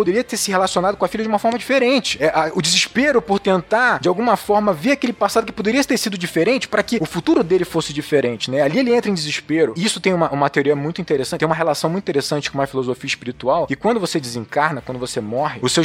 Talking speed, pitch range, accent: 245 wpm, 145-200 Hz, Brazilian